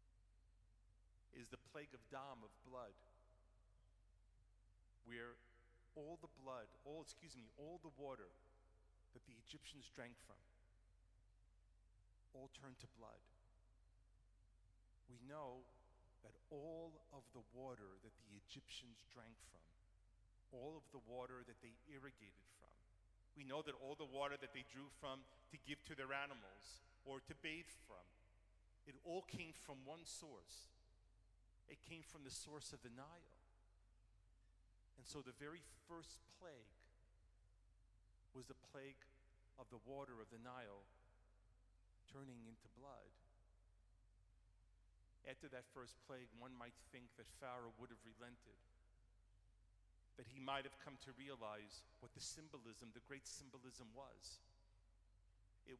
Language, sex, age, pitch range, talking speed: English, male, 40-59, 95-135 Hz, 135 wpm